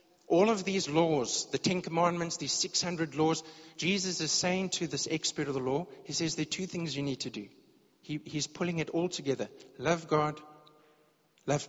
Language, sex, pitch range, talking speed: English, male, 135-175 Hz, 190 wpm